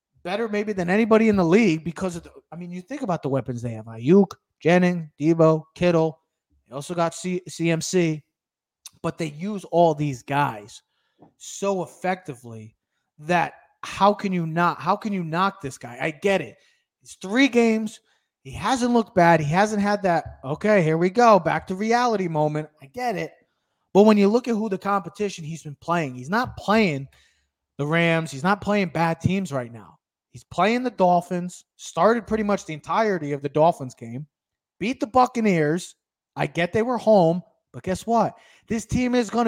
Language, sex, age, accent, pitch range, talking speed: English, male, 30-49, American, 160-220 Hz, 185 wpm